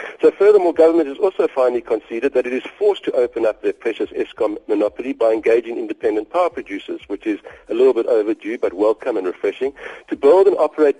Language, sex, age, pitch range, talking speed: English, male, 60-79, 295-430 Hz, 200 wpm